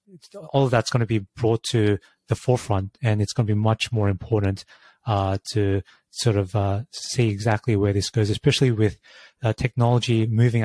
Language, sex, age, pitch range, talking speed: English, male, 30-49, 105-120 Hz, 185 wpm